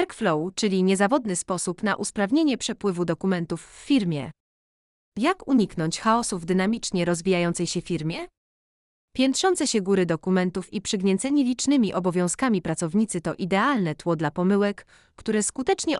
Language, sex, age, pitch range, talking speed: Polish, female, 30-49, 175-235 Hz, 130 wpm